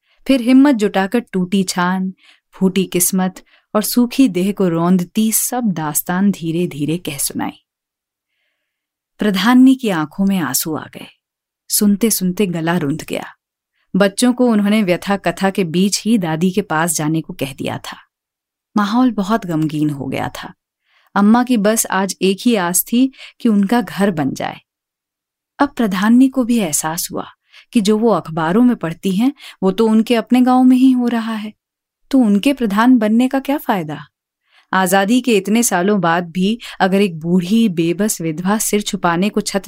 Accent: native